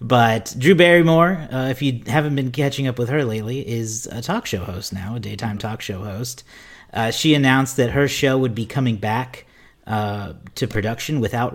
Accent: American